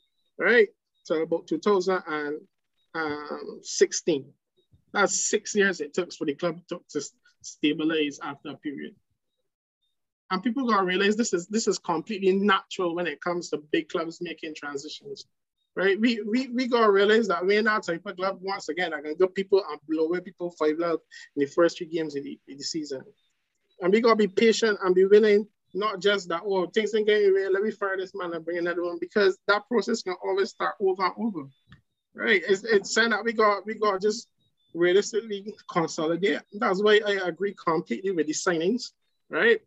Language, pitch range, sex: English, 170-210 Hz, male